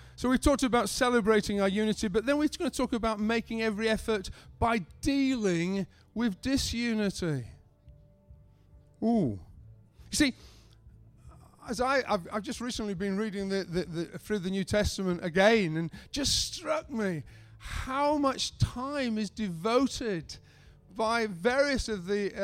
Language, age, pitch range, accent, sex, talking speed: English, 40-59, 195-260 Hz, British, male, 145 wpm